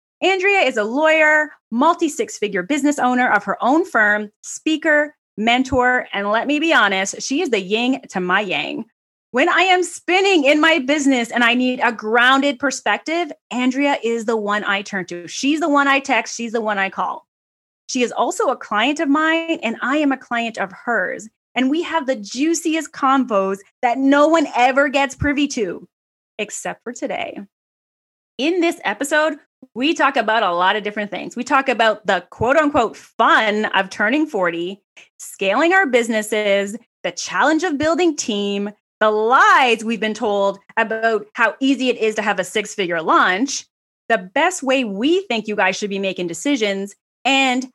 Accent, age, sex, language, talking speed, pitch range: American, 30-49, female, English, 180 wpm, 210-295 Hz